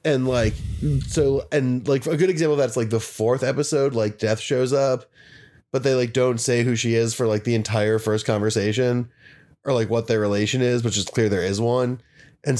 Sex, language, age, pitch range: male, English, 20-39, 110-135 Hz